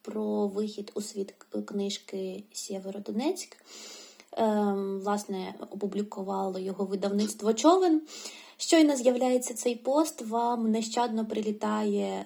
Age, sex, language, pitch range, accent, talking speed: 20-39, female, Ukrainian, 210-260 Hz, native, 95 wpm